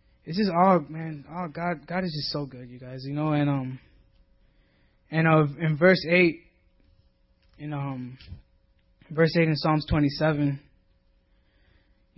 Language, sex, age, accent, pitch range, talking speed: English, male, 20-39, American, 145-175 Hz, 150 wpm